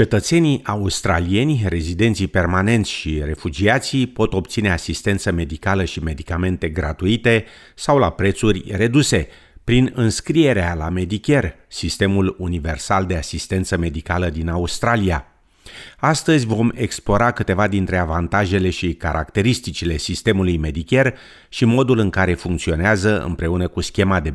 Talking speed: 115 wpm